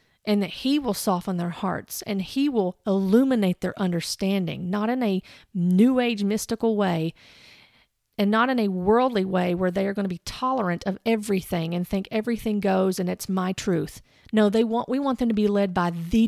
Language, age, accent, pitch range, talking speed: English, 40-59, American, 195-235 Hz, 200 wpm